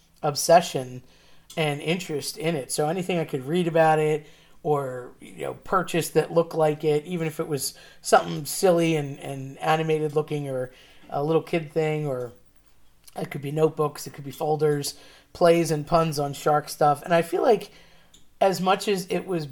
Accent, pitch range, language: American, 140-160 Hz, English